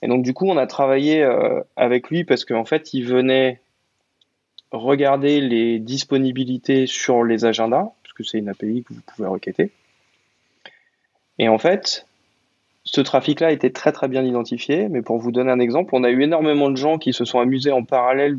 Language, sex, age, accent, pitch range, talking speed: French, male, 20-39, French, 120-140 Hz, 185 wpm